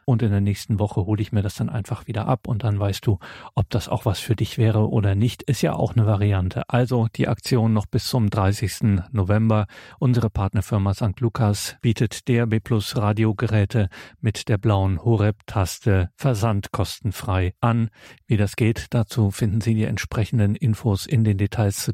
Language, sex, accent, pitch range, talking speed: German, male, German, 100-115 Hz, 185 wpm